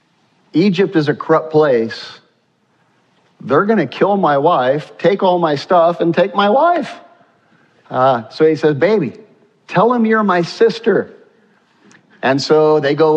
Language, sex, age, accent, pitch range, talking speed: English, male, 50-69, American, 135-200 Hz, 150 wpm